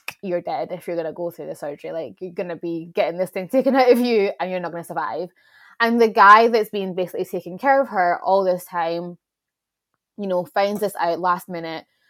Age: 20-39